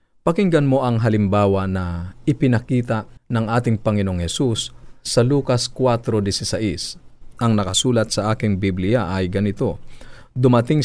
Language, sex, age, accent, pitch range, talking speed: Filipino, male, 40-59, native, 105-125 Hz, 115 wpm